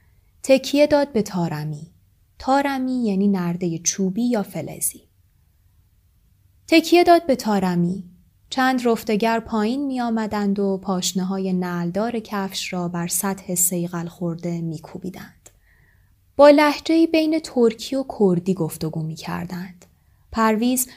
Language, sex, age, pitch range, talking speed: Persian, female, 20-39, 165-225 Hz, 115 wpm